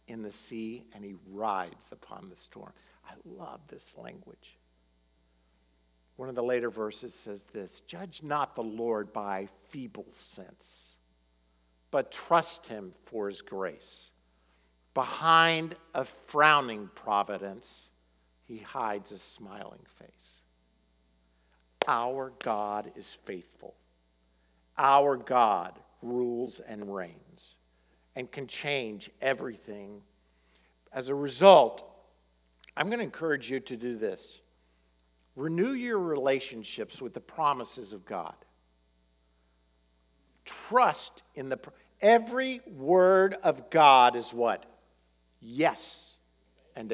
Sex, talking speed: male, 110 wpm